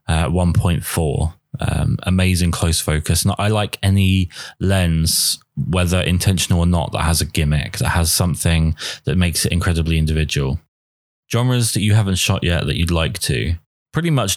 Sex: male